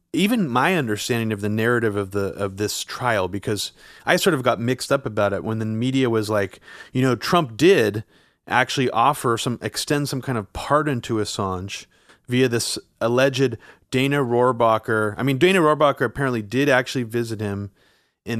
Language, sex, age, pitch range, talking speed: English, male, 30-49, 110-140 Hz, 175 wpm